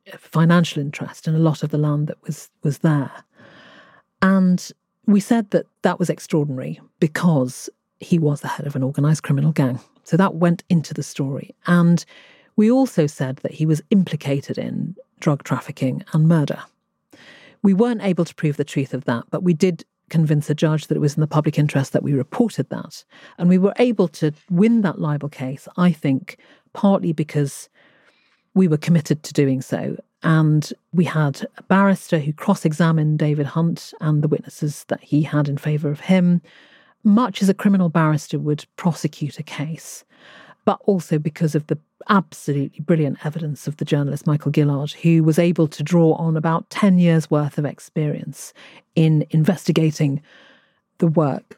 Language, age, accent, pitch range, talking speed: English, 40-59, British, 150-180 Hz, 175 wpm